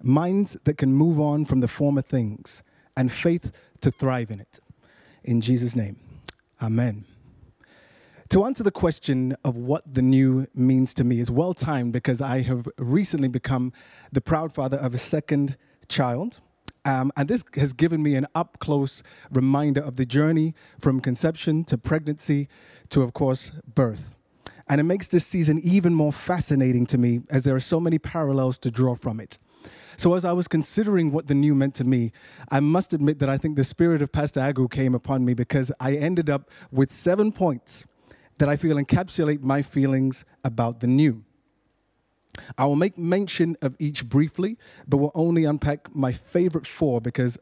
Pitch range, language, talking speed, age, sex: 130-160 Hz, English, 175 wpm, 30-49, male